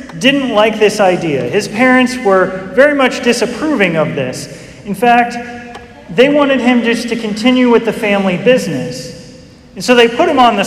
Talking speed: 175 wpm